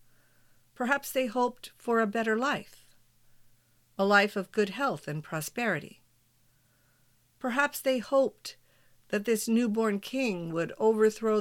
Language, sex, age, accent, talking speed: English, female, 50-69, American, 120 wpm